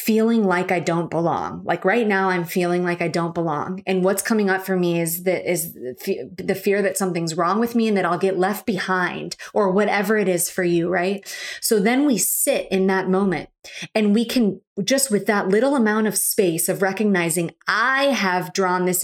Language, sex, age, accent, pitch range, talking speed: English, female, 20-39, American, 180-210 Hz, 205 wpm